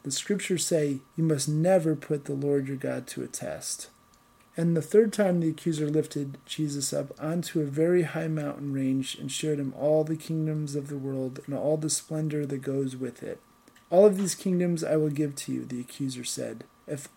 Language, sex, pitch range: English, male, 140-165 Hz